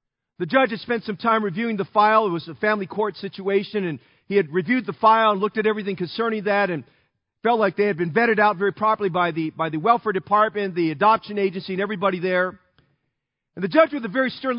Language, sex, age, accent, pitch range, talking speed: English, male, 40-59, American, 190-230 Hz, 230 wpm